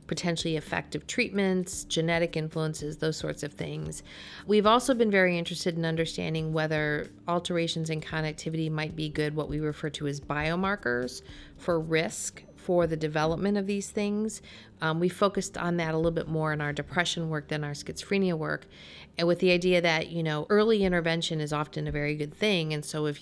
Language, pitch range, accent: English, 150-170 Hz, American